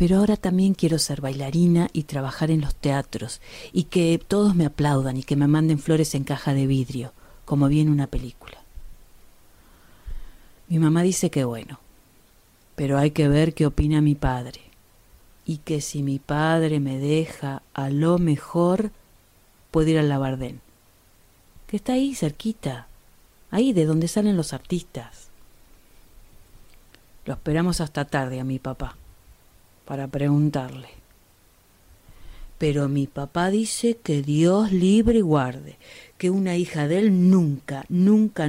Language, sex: Spanish, female